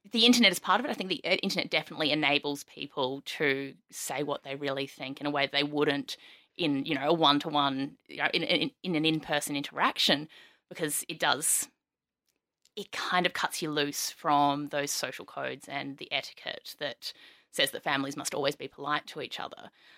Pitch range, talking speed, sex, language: 145-165 Hz, 185 wpm, female, English